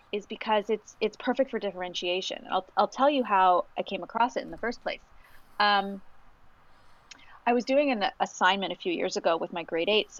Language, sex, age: English, female, 30-49